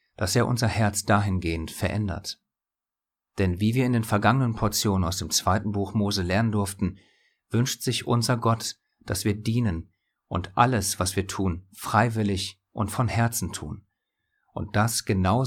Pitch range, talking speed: 95-115 Hz, 155 wpm